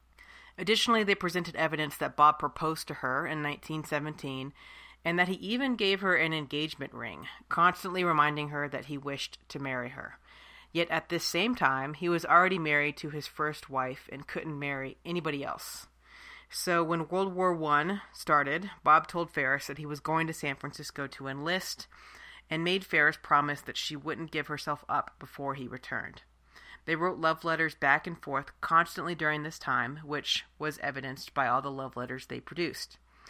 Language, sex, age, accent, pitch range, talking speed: English, female, 40-59, American, 145-175 Hz, 180 wpm